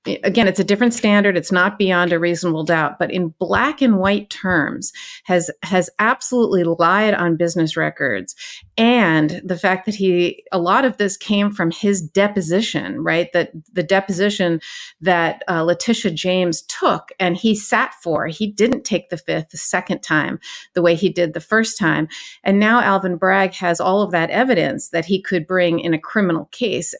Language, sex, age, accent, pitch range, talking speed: English, female, 40-59, American, 170-210 Hz, 180 wpm